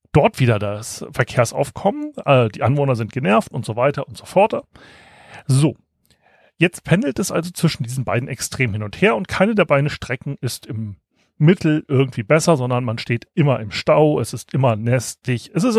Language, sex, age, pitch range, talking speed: German, male, 40-59, 125-185 Hz, 185 wpm